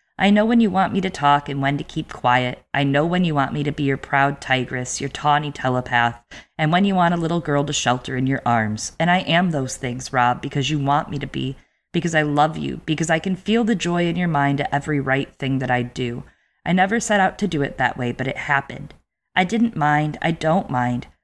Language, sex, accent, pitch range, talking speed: English, female, American, 135-180 Hz, 250 wpm